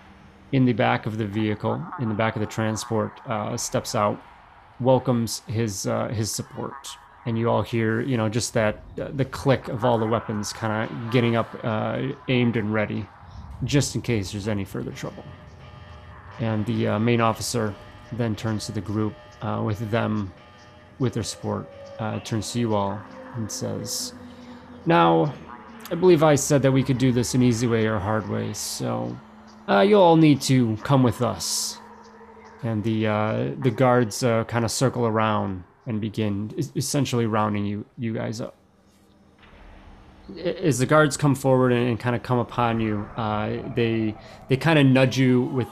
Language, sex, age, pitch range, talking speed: English, male, 30-49, 105-125 Hz, 180 wpm